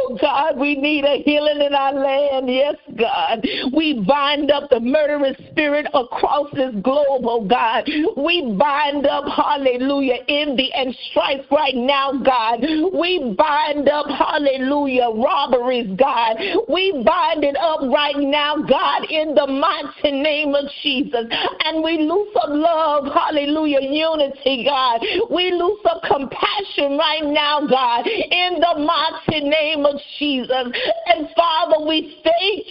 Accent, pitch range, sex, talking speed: American, 280-320 Hz, female, 140 wpm